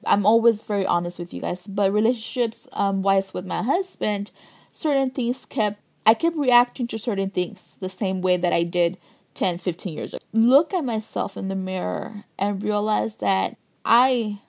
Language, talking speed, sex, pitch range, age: English, 175 wpm, female, 200-245 Hz, 20-39